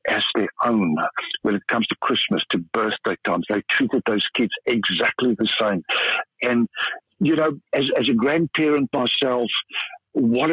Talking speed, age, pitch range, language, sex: 155 wpm, 60-79, 105-130 Hz, English, male